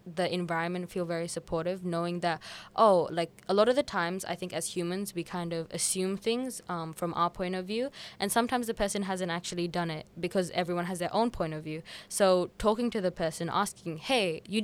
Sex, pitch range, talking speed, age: female, 170-195 Hz, 215 wpm, 10-29